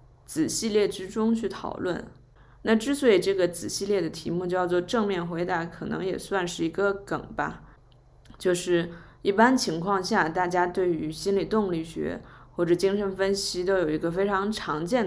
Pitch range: 165-195 Hz